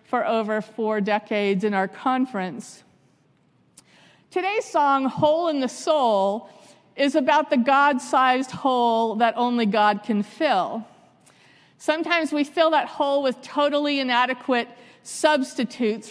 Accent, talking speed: American, 120 wpm